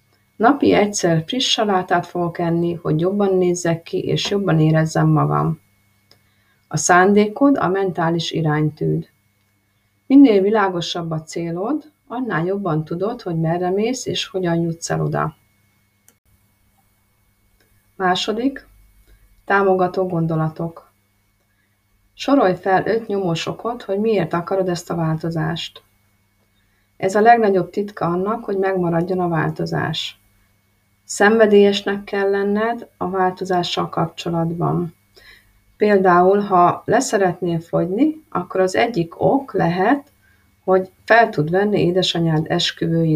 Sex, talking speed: female, 105 wpm